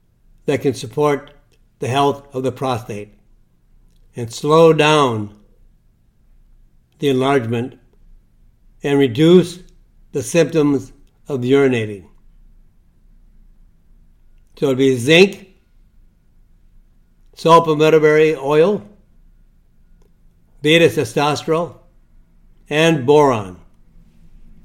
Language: English